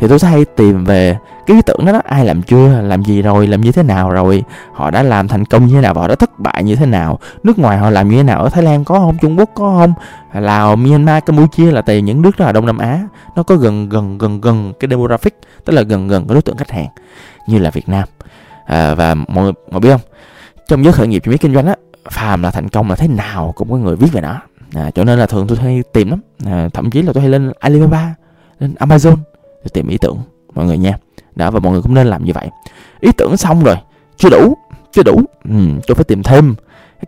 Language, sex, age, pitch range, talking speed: Vietnamese, male, 20-39, 100-155 Hz, 255 wpm